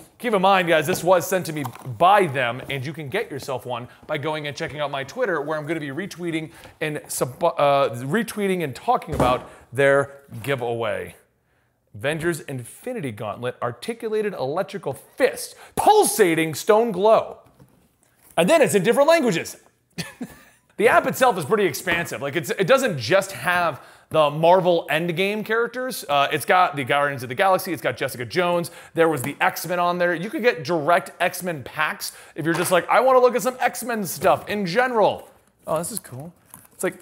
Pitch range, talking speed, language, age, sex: 155-210 Hz, 180 wpm, English, 30-49, male